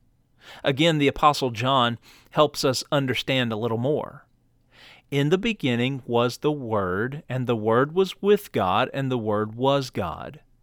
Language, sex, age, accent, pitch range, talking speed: English, male, 40-59, American, 115-145 Hz, 150 wpm